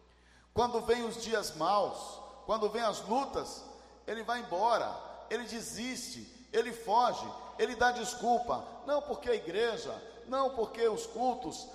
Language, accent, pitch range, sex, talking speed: Portuguese, Brazilian, 190-245 Hz, male, 140 wpm